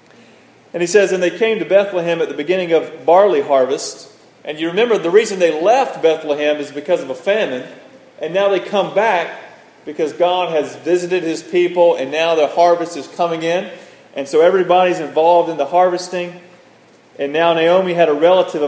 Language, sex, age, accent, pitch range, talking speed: English, male, 30-49, American, 155-195 Hz, 185 wpm